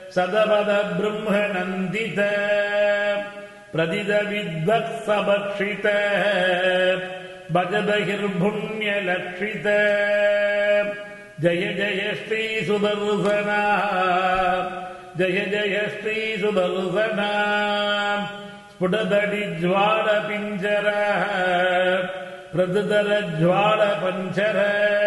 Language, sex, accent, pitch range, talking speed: English, male, Indian, 185-210 Hz, 50 wpm